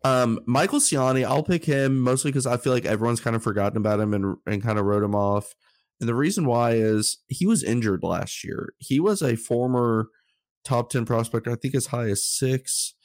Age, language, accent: 20-39, English, American